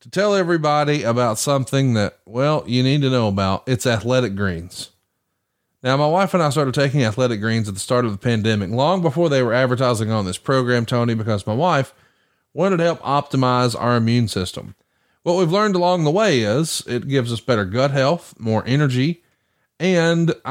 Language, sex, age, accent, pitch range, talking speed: English, male, 30-49, American, 120-165 Hz, 190 wpm